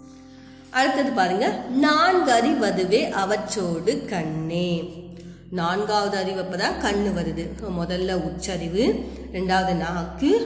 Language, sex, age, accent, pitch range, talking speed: Tamil, female, 30-49, native, 175-225 Hz, 75 wpm